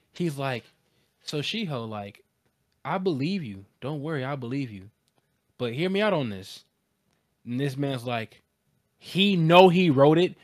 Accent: American